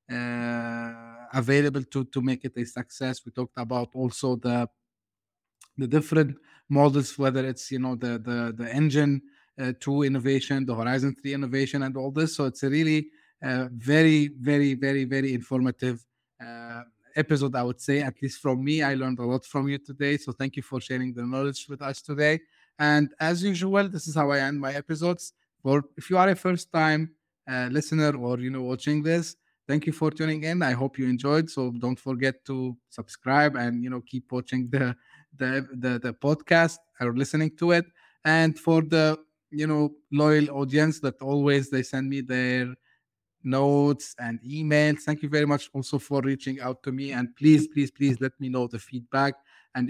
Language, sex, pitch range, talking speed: English, male, 125-150 Hz, 190 wpm